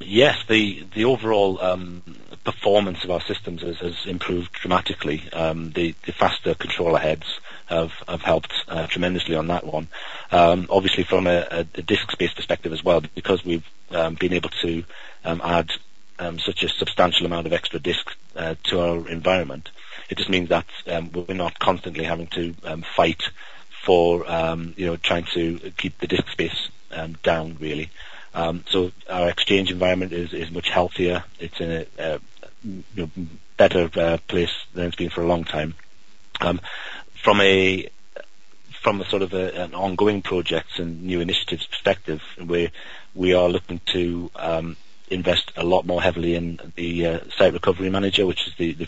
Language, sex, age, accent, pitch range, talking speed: English, male, 40-59, British, 80-90 Hz, 170 wpm